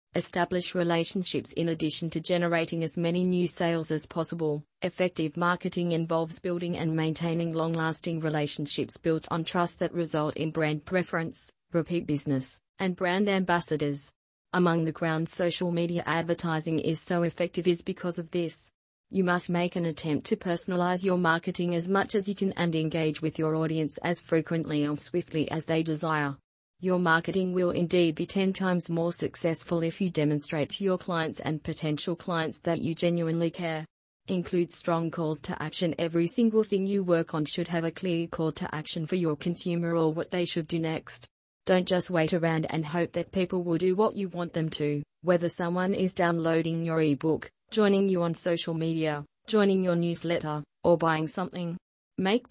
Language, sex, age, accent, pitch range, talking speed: English, female, 30-49, Australian, 160-180 Hz, 175 wpm